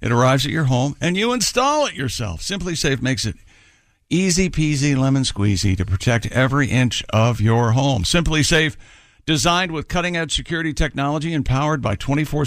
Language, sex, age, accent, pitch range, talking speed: English, male, 60-79, American, 120-160 Hz, 180 wpm